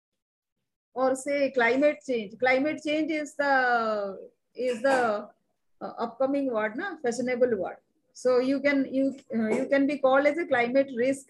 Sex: female